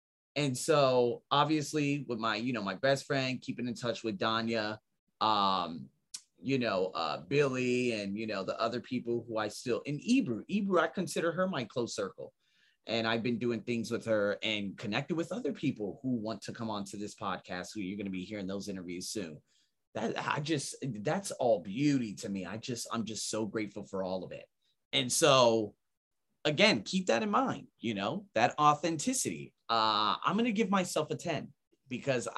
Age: 30-49